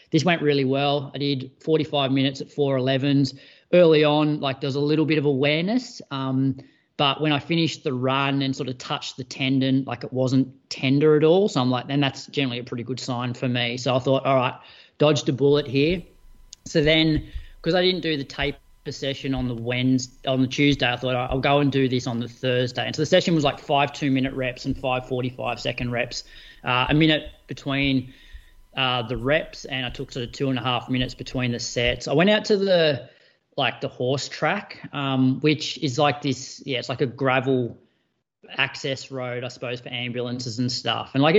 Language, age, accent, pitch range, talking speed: English, 30-49, Australian, 125-150 Hz, 215 wpm